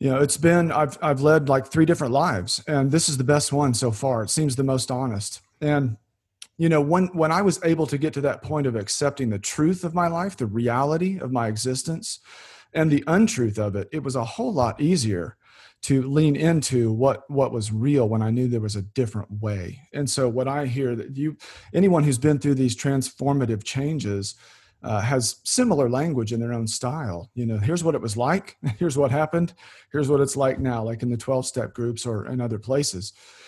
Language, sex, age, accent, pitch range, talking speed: English, male, 40-59, American, 115-150 Hz, 215 wpm